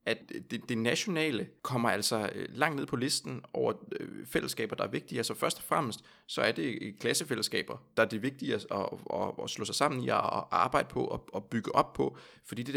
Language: Danish